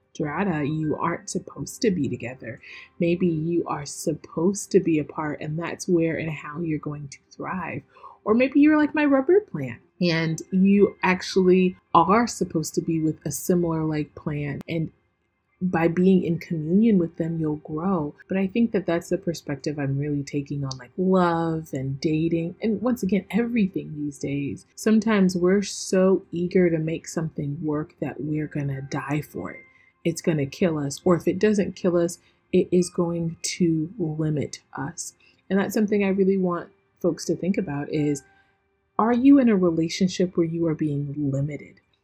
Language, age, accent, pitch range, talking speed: English, 30-49, American, 155-190 Hz, 180 wpm